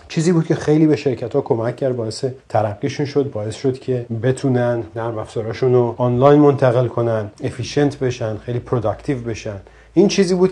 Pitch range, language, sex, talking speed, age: 115-145 Hz, Persian, male, 185 wpm, 30-49